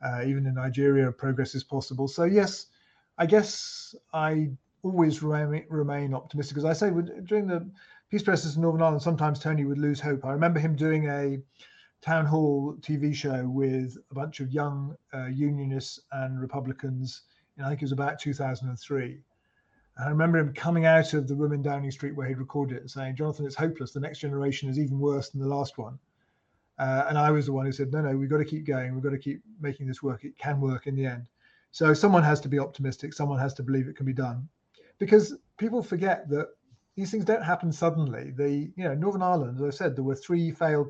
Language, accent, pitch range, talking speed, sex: English, British, 135-160 Hz, 220 wpm, male